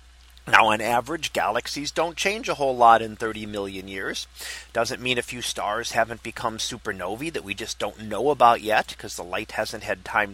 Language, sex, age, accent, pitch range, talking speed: English, male, 30-49, American, 110-145 Hz, 195 wpm